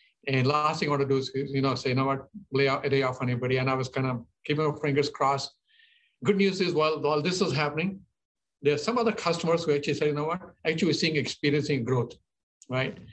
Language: English